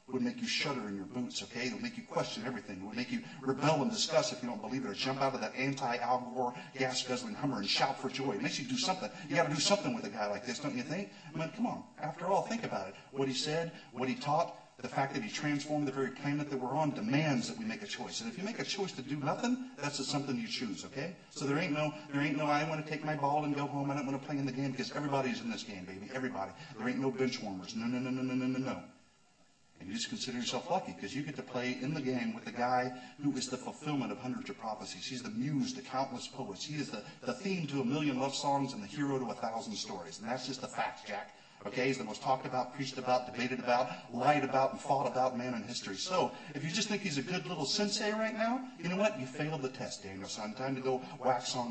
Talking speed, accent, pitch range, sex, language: 285 wpm, American, 130-160 Hz, male, English